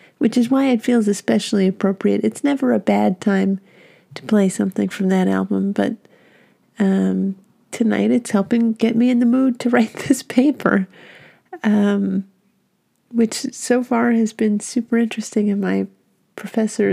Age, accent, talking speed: 40-59, American, 150 wpm